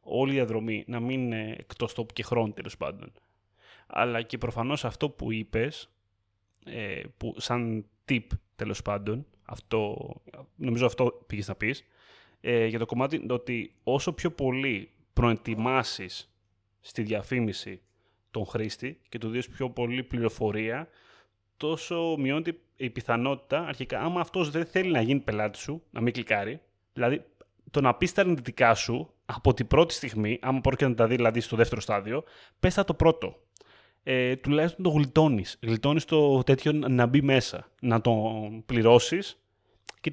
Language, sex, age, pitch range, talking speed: Greek, male, 30-49, 110-135 Hz, 150 wpm